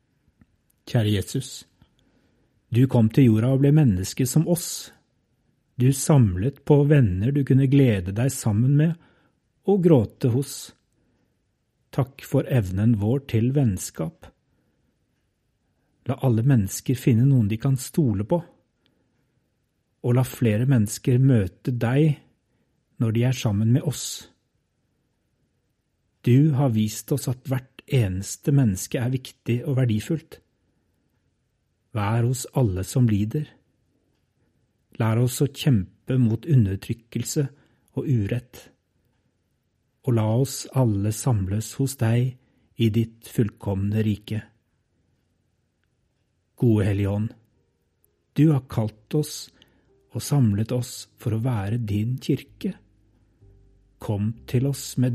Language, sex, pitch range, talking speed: English, male, 110-135 Hz, 115 wpm